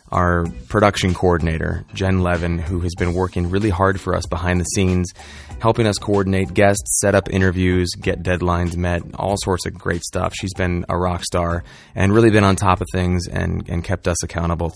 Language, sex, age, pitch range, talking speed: English, male, 20-39, 90-100 Hz, 200 wpm